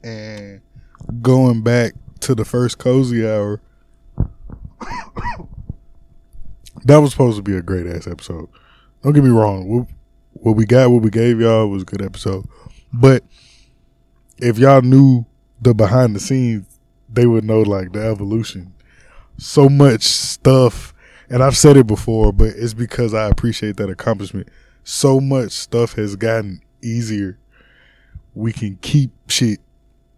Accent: American